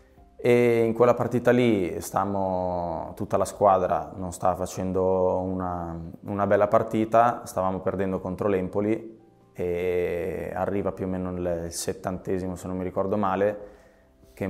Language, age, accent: Italian, 20-39, native